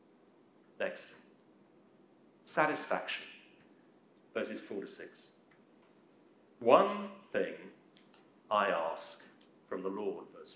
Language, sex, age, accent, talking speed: English, male, 50-69, British, 80 wpm